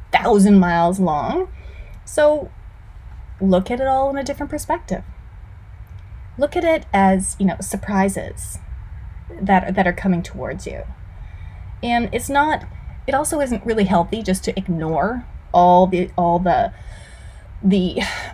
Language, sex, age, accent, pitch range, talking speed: English, female, 30-49, American, 170-215 Hz, 135 wpm